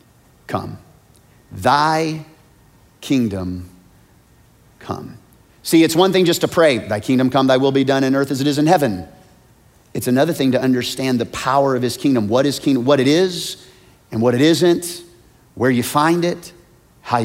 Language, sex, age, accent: English, male, 30-49, American